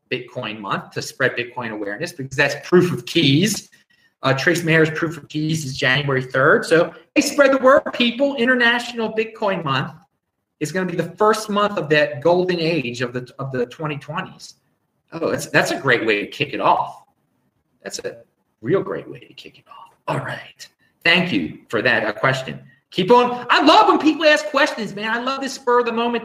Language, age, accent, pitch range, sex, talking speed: English, 30-49, American, 145-235 Hz, male, 195 wpm